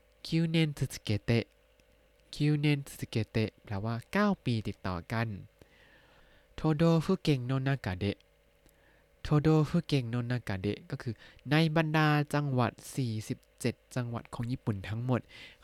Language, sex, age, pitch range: Thai, male, 20-39, 110-140 Hz